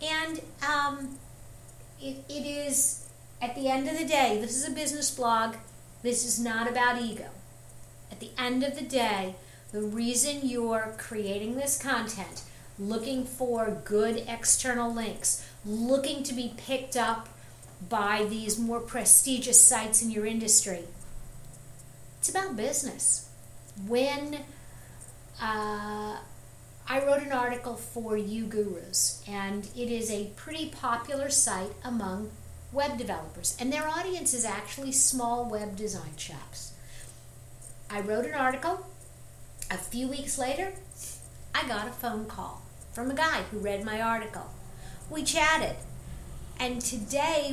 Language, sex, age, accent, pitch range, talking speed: English, female, 50-69, American, 195-265 Hz, 135 wpm